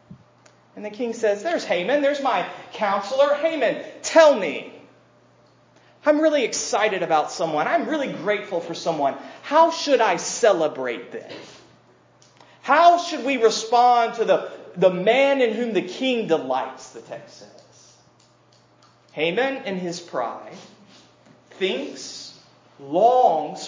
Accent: American